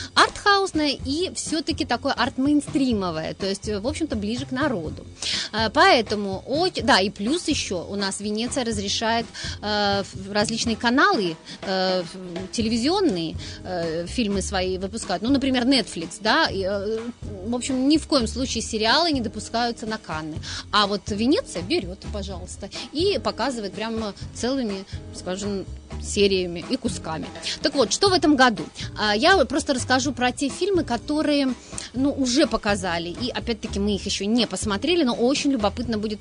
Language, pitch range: Russian, 205-285 Hz